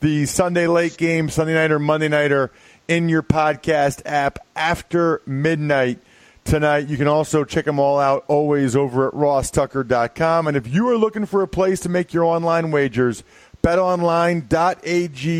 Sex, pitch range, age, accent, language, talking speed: male, 145-185 Hz, 40-59, American, English, 155 wpm